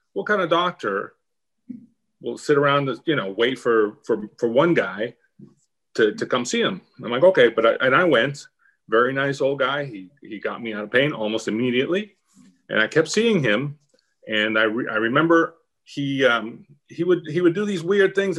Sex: male